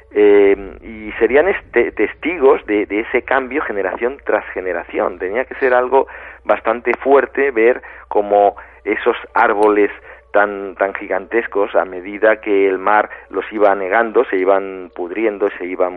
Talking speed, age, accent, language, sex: 145 wpm, 40-59, Spanish, Spanish, male